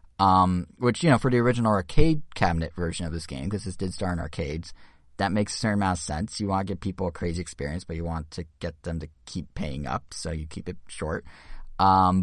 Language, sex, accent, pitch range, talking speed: English, male, American, 85-100 Hz, 245 wpm